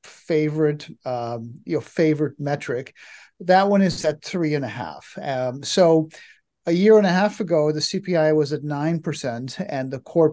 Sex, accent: male, American